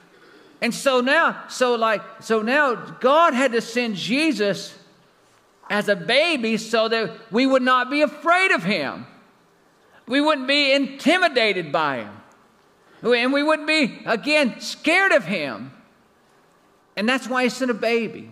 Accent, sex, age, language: American, male, 50-69, English